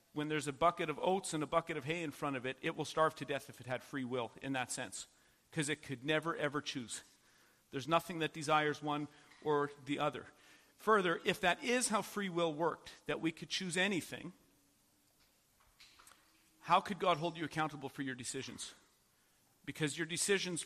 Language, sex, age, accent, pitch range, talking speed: English, male, 40-59, American, 140-170 Hz, 195 wpm